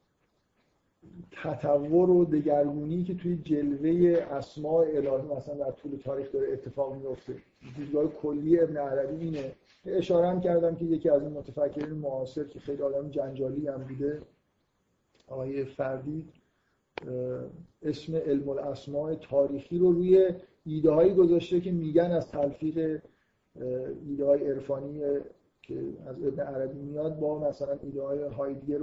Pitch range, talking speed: 140-155 Hz, 125 wpm